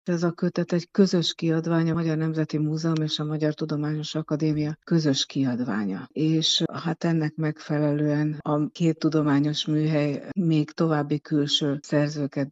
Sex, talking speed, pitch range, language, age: female, 140 wpm, 145-160 Hz, Hungarian, 60-79